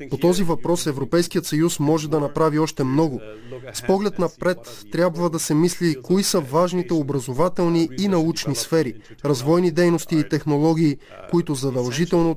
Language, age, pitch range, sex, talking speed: Bulgarian, 20-39, 135-165 Hz, male, 145 wpm